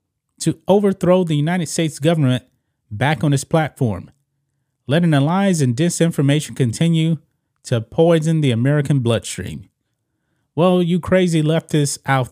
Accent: American